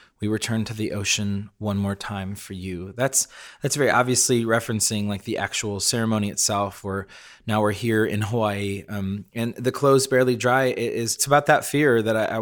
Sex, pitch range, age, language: male, 100-120 Hz, 20-39, English